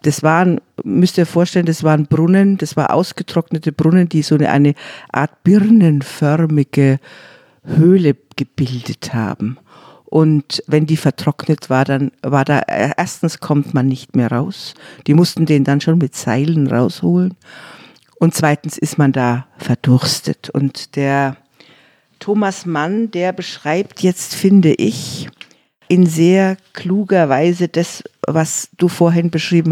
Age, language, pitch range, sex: 50-69, German, 140-175 Hz, female